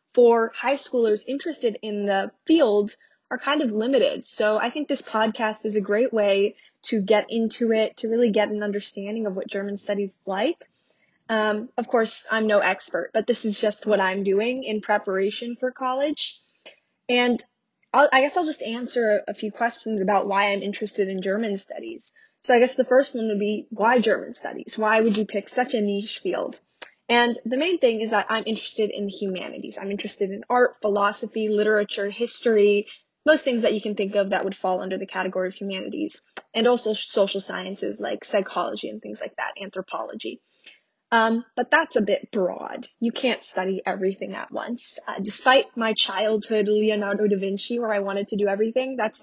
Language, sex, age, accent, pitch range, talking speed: English, female, 10-29, American, 205-245 Hz, 190 wpm